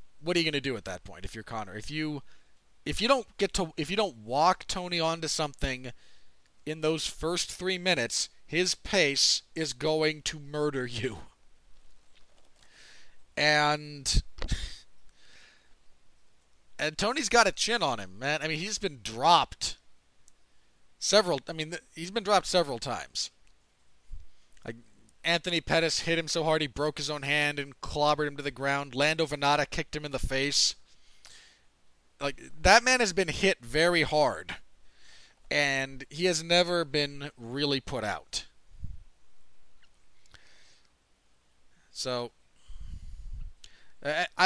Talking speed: 140 wpm